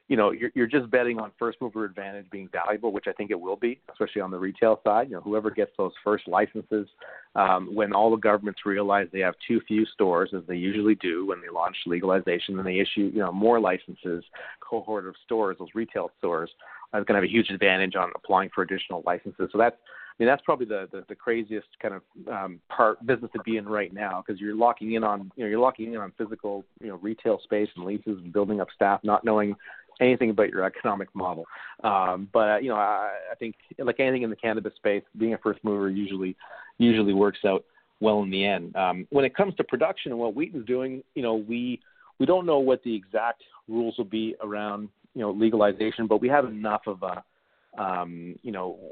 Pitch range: 100-115 Hz